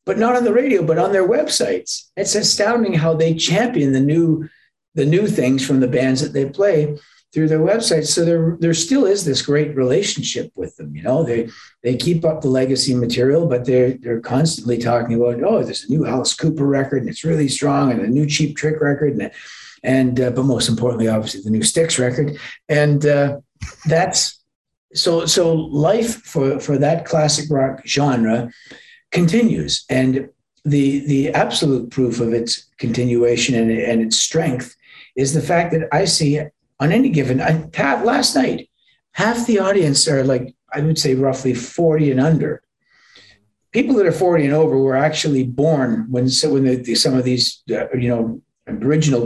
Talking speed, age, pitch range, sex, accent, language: 185 wpm, 50-69, 125-160 Hz, male, American, English